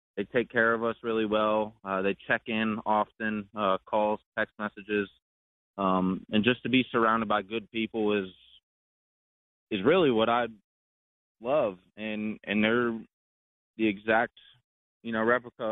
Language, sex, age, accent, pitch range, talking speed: English, male, 20-39, American, 95-110 Hz, 150 wpm